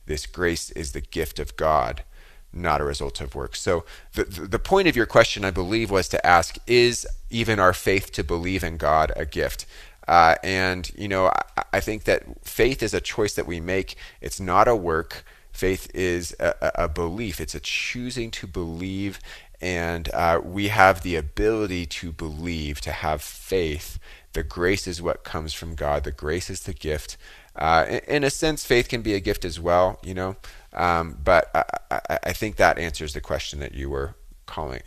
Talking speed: 195 wpm